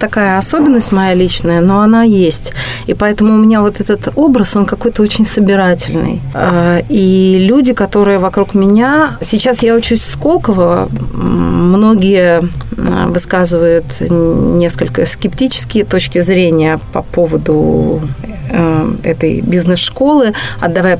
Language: Russian